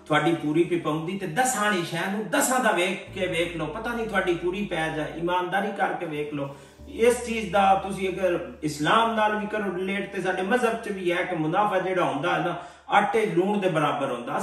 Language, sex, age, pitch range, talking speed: Punjabi, male, 50-69, 150-190 Hz, 210 wpm